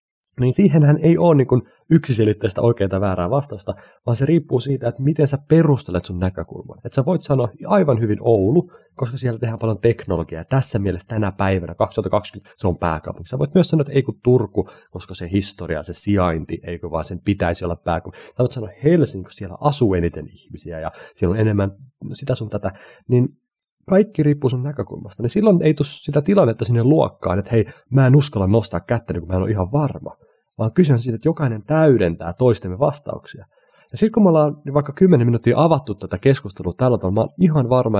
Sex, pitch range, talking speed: male, 100-145 Hz, 200 wpm